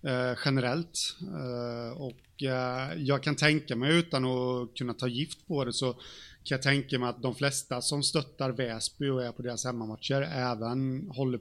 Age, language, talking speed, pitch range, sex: 30-49, Swedish, 180 wpm, 125-150 Hz, male